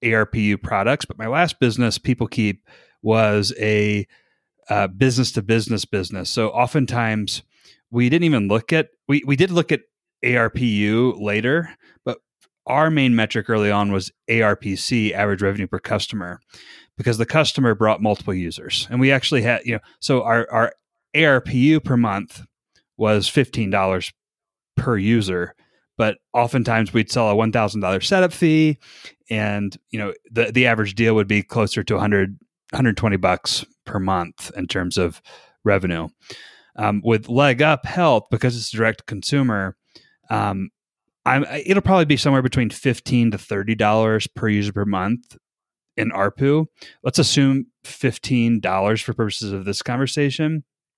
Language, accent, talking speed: English, American, 145 wpm